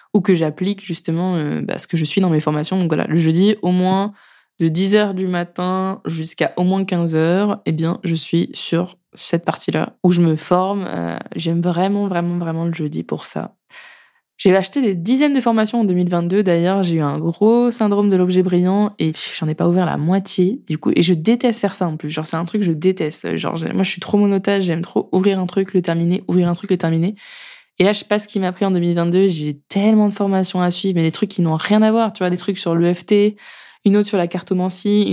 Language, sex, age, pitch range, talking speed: French, female, 20-39, 165-205 Hz, 245 wpm